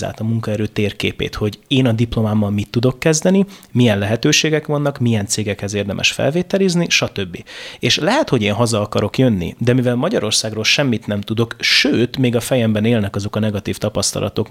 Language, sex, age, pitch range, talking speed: Hungarian, male, 30-49, 105-130 Hz, 165 wpm